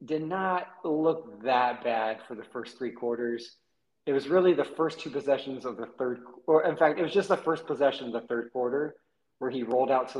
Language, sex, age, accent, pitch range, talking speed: English, male, 30-49, American, 120-145 Hz, 225 wpm